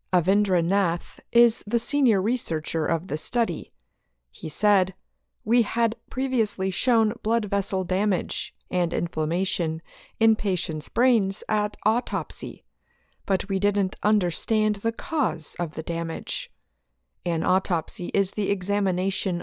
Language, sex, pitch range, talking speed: English, female, 180-230 Hz, 115 wpm